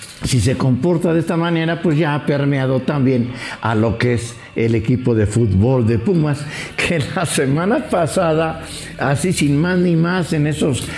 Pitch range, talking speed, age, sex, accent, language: 110-150 Hz, 175 wpm, 60-79, male, Mexican, English